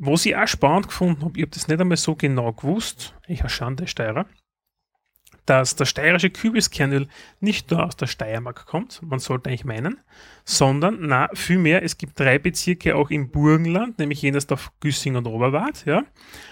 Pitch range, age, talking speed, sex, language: 130-165 Hz, 30-49, 180 wpm, male, German